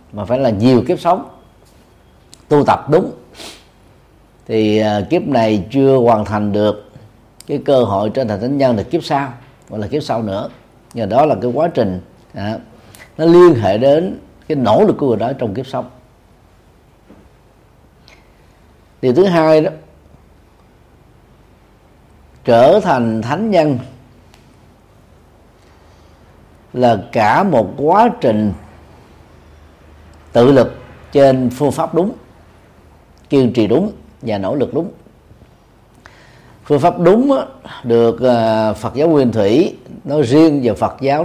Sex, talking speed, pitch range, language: male, 130 wpm, 95-145 Hz, Vietnamese